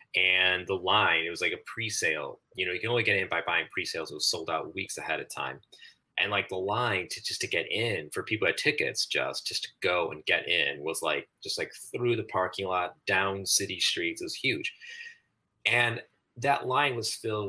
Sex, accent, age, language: male, American, 30-49, English